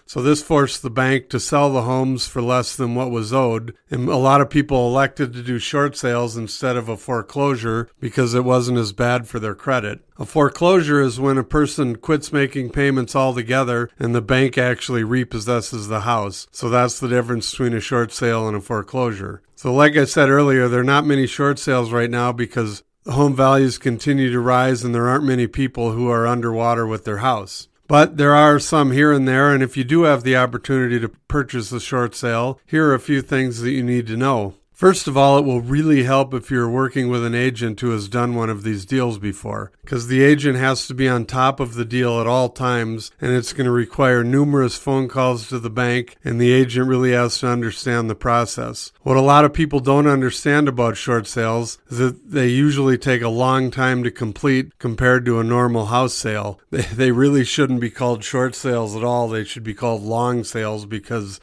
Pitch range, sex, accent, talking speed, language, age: 120-135 Hz, male, American, 220 wpm, English, 50-69